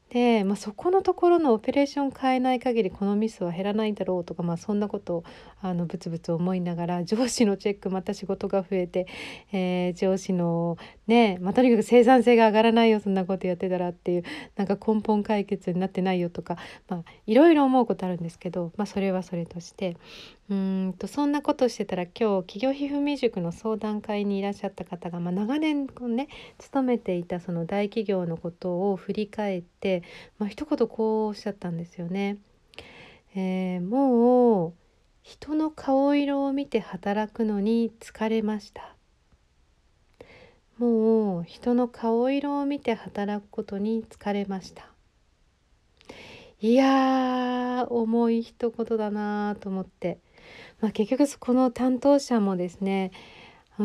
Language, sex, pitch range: Japanese, female, 185-240 Hz